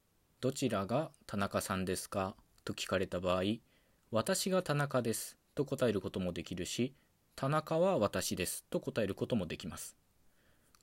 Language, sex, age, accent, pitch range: Japanese, male, 20-39, native, 100-155 Hz